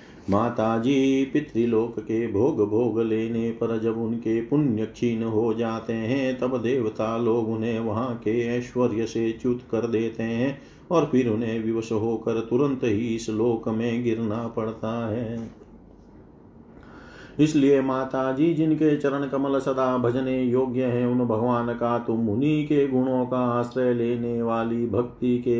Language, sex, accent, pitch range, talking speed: Hindi, male, native, 115-130 Hz, 145 wpm